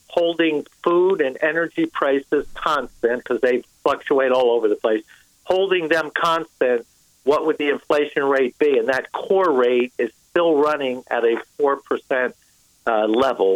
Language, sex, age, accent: Japanese, male, 50-69, American